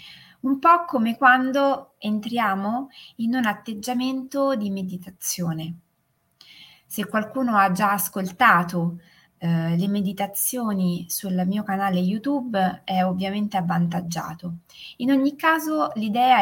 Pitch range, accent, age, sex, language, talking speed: 185-245 Hz, native, 20-39, female, Italian, 105 wpm